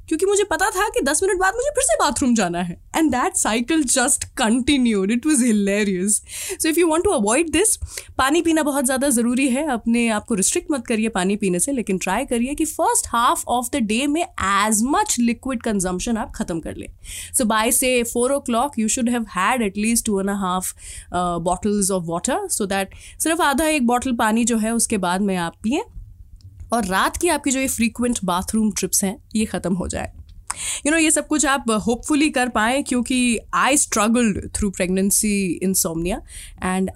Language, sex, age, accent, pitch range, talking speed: Hindi, female, 20-39, native, 195-275 Hz, 195 wpm